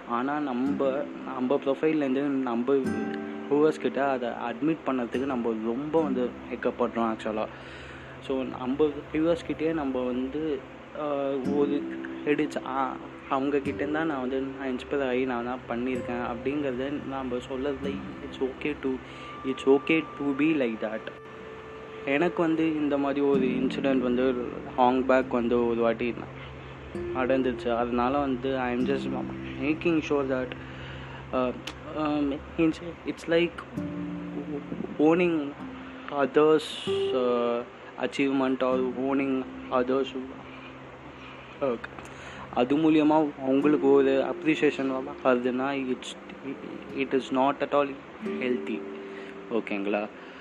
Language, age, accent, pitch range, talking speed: Tamil, 20-39, native, 120-145 Hz, 105 wpm